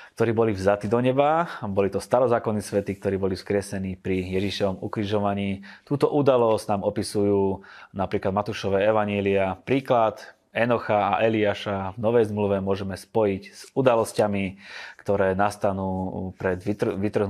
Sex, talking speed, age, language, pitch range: male, 125 wpm, 20-39, Slovak, 95-110 Hz